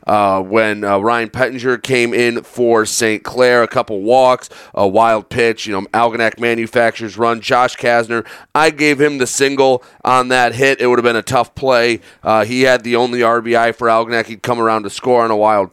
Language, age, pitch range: English, 30-49, 115-135 Hz